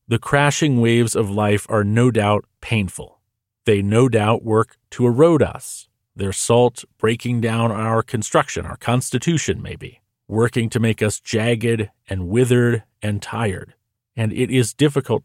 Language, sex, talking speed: English, male, 150 wpm